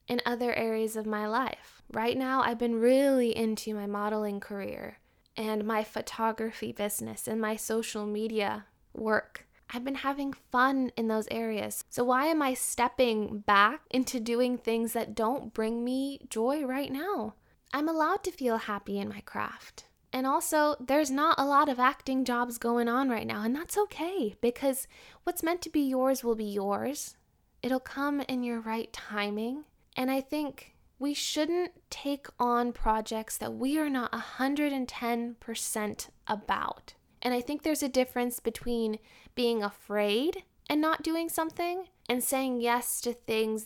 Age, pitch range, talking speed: 10-29, 220-270 Hz, 160 wpm